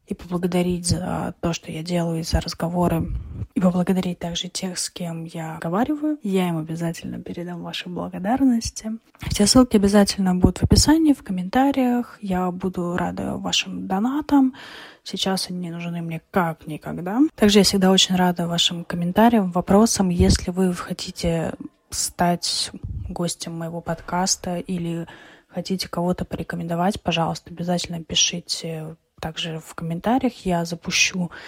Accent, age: native, 20-39